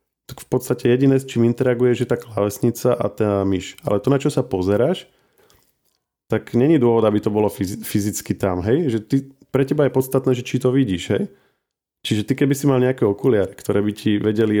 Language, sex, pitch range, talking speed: Slovak, male, 105-120 Hz, 205 wpm